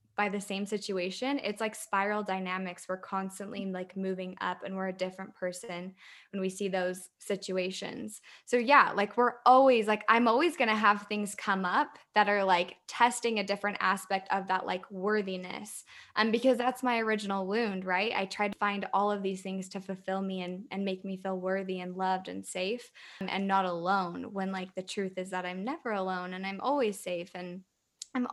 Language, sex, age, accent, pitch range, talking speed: English, female, 20-39, American, 185-220 Hz, 200 wpm